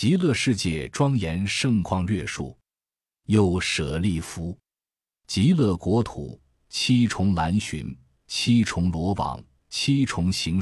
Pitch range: 80-115 Hz